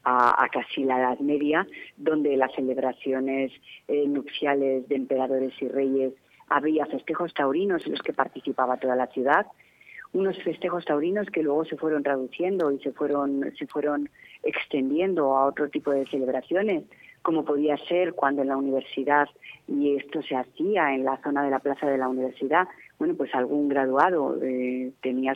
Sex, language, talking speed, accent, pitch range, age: female, Spanish, 160 wpm, Spanish, 130-150 Hz, 40-59